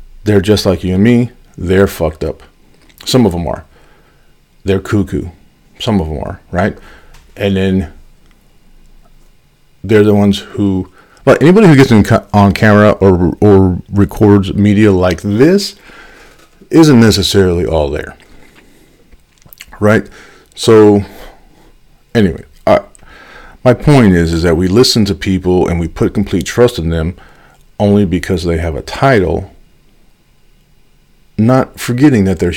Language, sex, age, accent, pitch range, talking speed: English, male, 50-69, American, 95-105 Hz, 130 wpm